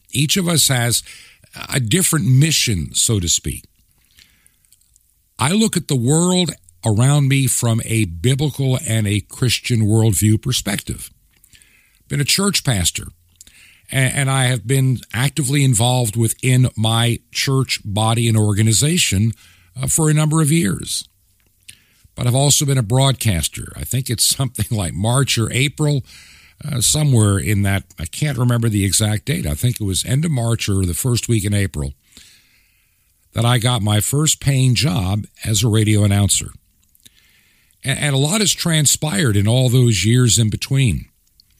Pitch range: 100-135 Hz